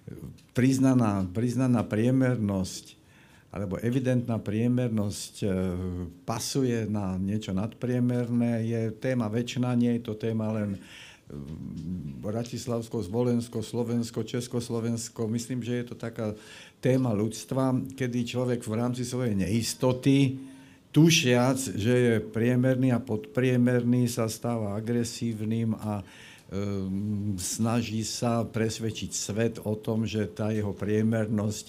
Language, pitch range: Slovak, 105-120 Hz